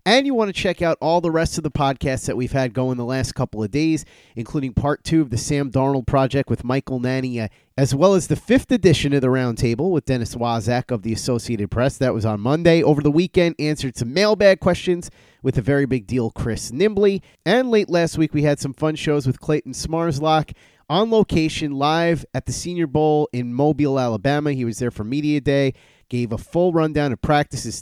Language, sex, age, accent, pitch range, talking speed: English, male, 30-49, American, 120-160 Hz, 215 wpm